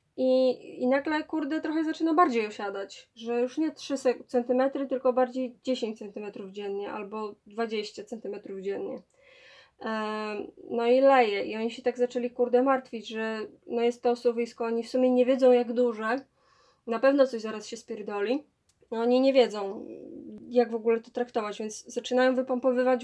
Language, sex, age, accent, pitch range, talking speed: Polish, female, 20-39, native, 230-260 Hz, 165 wpm